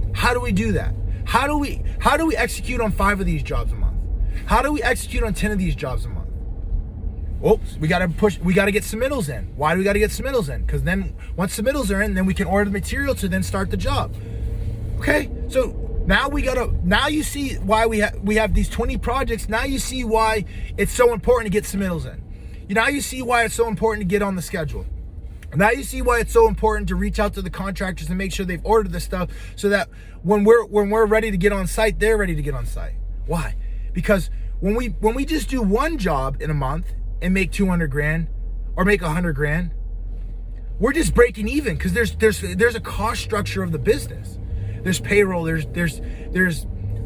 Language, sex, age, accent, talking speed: English, male, 20-39, American, 235 wpm